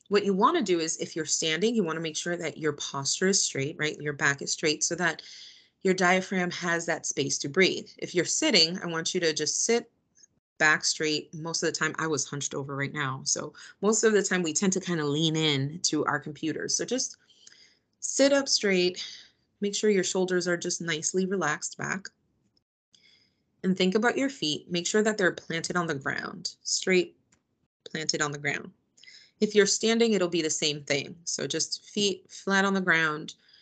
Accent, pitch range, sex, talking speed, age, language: American, 155-195 Hz, female, 205 wpm, 30-49, English